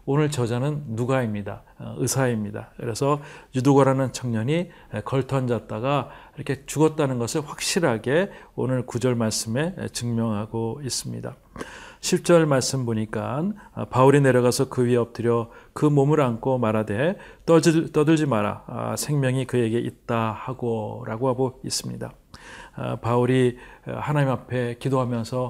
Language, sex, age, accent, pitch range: Korean, male, 40-59, native, 120-145 Hz